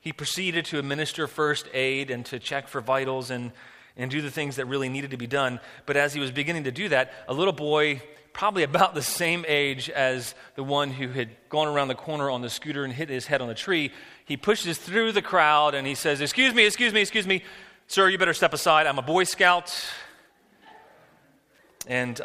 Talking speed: 220 wpm